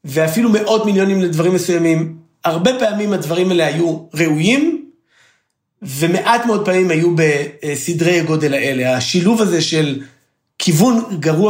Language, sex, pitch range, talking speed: Hebrew, male, 165-210 Hz, 120 wpm